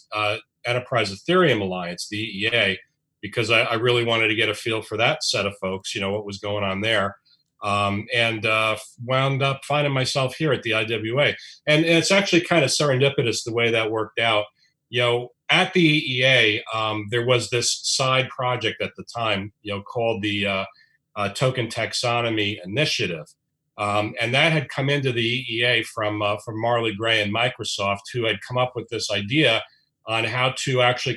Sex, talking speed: male, 190 wpm